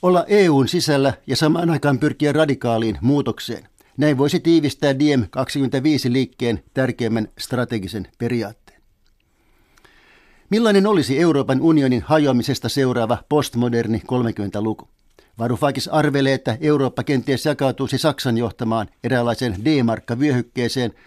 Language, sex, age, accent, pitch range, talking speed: Finnish, male, 60-79, native, 115-145 Hz, 105 wpm